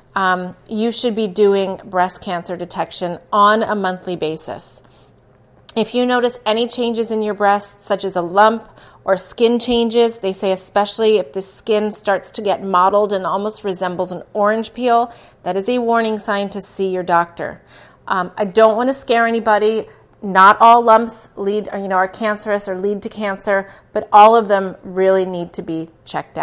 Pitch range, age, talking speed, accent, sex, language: 185-220 Hz, 30-49, 180 wpm, American, female, English